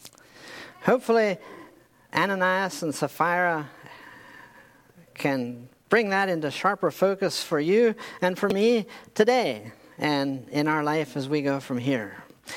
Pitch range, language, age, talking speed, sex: 155-205 Hz, English, 50-69, 120 wpm, male